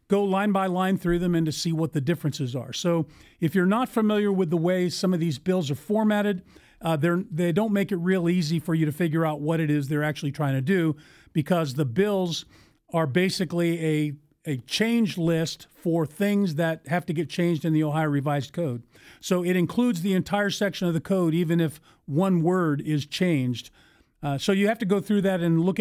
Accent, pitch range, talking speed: American, 150-185 Hz, 215 wpm